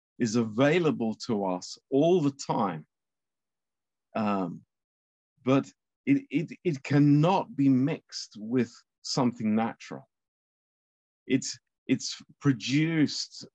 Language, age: Romanian, 50-69